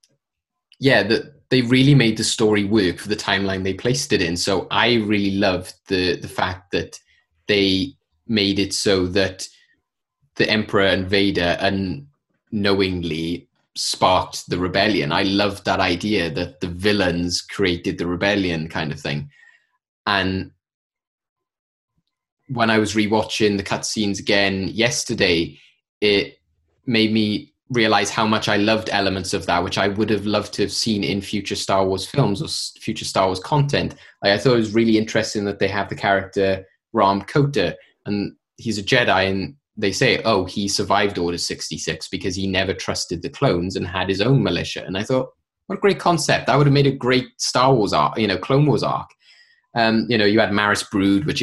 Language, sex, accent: English, male, British